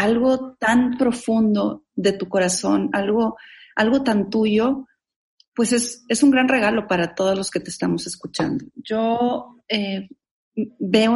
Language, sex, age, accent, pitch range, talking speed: Spanish, female, 40-59, Mexican, 200-240 Hz, 140 wpm